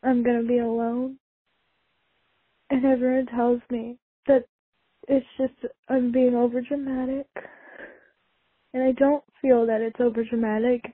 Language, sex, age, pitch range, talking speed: English, female, 10-29, 250-295 Hz, 125 wpm